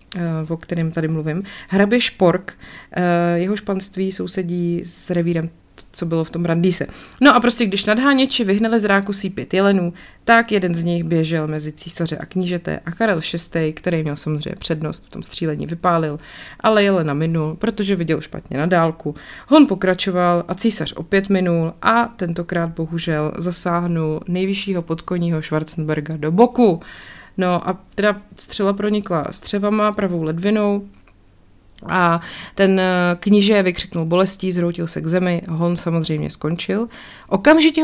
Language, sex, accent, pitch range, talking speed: Czech, female, native, 165-200 Hz, 145 wpm